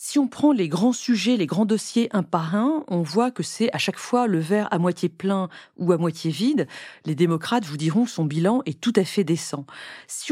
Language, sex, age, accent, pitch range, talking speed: French, female, 40-59, French, 170-230 Hz, 240 wpm